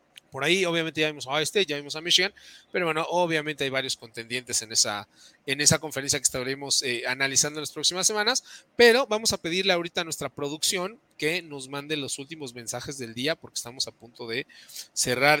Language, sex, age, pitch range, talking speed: Spanish, male, 30-49, 130-170 Hz, 205 wpm